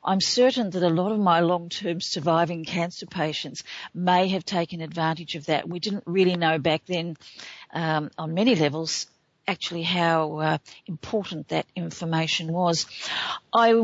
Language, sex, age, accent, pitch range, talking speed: English, female, 50-69, Australian, 165-195 Hz, 150 wpm